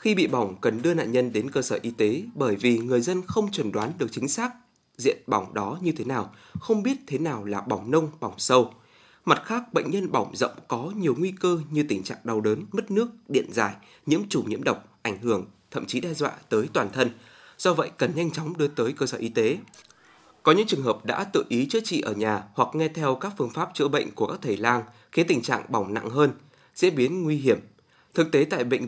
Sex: male